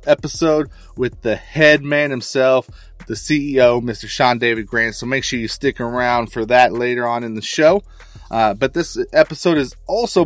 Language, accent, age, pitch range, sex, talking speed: English, American, 30-49, 110-135 Hz, male, 180 wpm